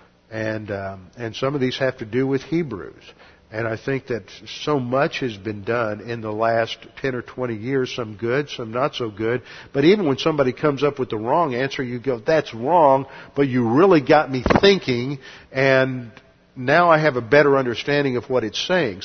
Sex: male